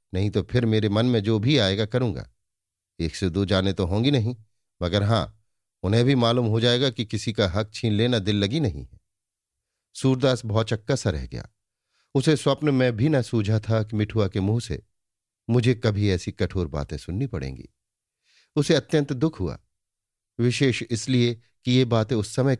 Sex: male